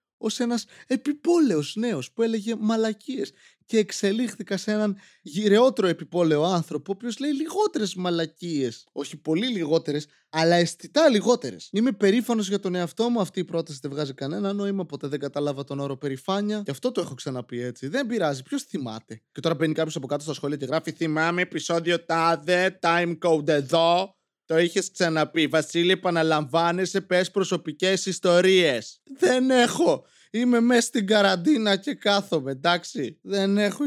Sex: male